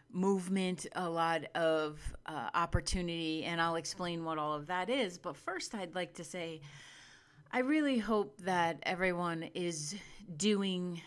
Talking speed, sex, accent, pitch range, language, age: 145 wpm, female, American, 155-180 Hz, English, 30-49